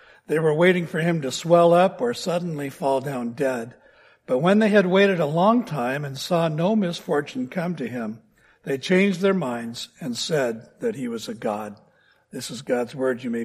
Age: 60-79